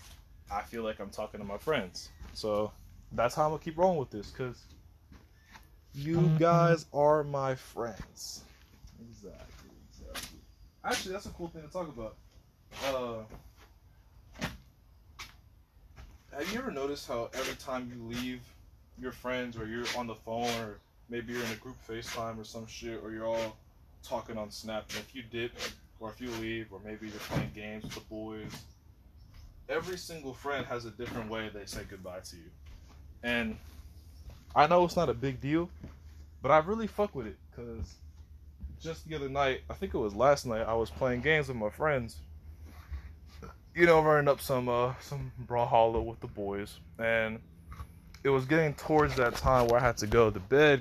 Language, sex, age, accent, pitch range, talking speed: English, male, 20-39, American, 90-125 Hz, 180 wpm